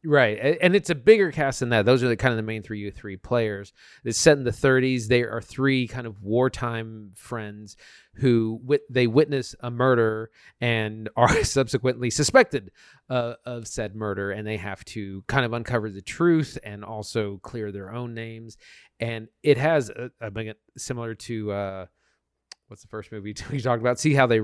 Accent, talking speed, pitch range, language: American, 190 wpm, 105-130 Hz, English